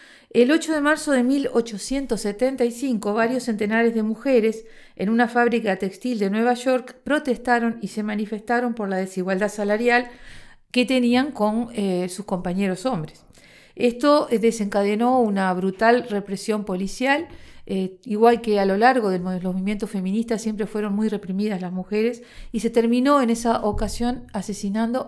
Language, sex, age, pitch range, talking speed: Spanish, female, 50-69, 200-245 Hz, 145 wpm